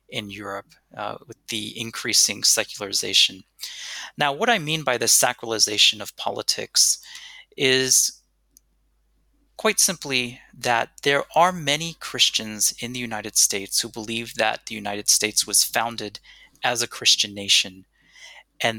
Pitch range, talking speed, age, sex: 105-140 Hz, 130 wpm, 30-49, male